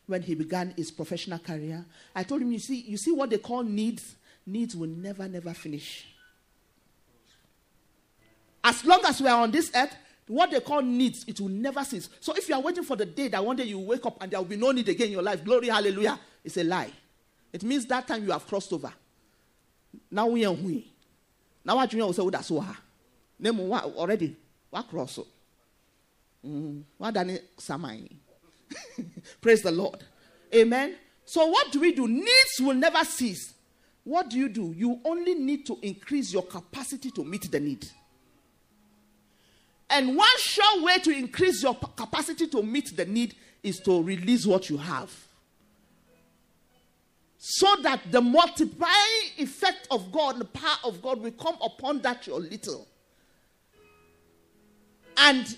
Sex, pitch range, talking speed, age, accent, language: male, 185-275 Hz, 165 wpm, 40-59, Nigerian, English